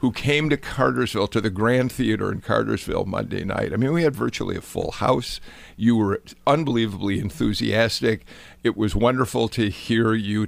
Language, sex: English, male